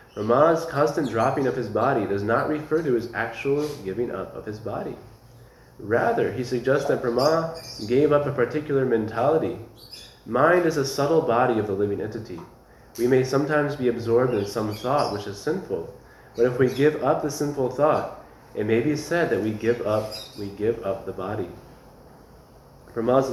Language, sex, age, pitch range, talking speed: English, male, 20-39, 115-145 Hz, 170 wpm